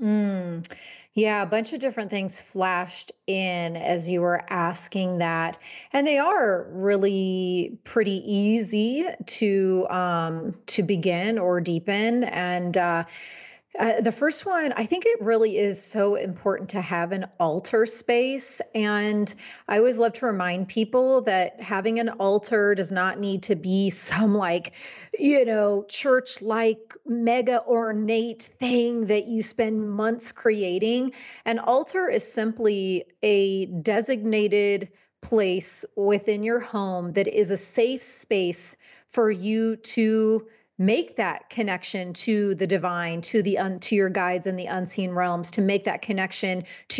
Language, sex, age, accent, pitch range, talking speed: English, female, 30-49, American, 185-225 Hz, 145 wpm